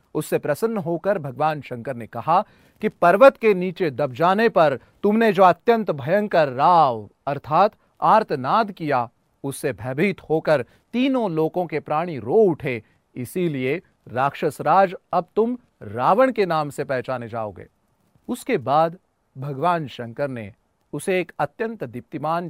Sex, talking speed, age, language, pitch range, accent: male, 135 wpm, 40-59, Hindi, 130-200 Hz, native